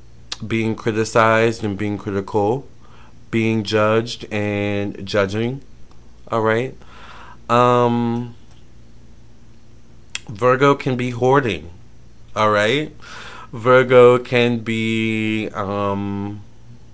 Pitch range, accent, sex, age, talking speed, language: 100-115 Hz, American, male, 30-49, 65 wpm, English